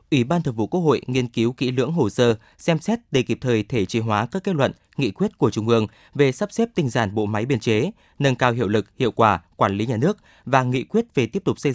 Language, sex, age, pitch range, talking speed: Vietnamese, male, 20-39, 115-155 Hz, 275 wpm